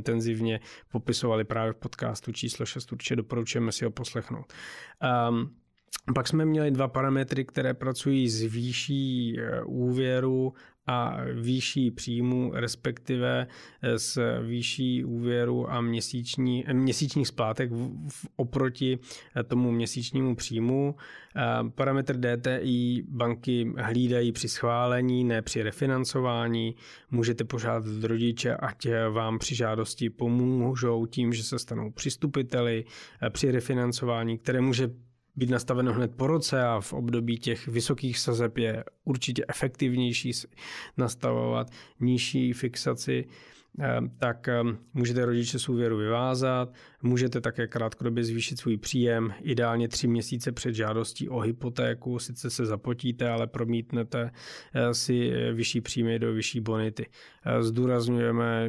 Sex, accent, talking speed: male, native, 115 wpm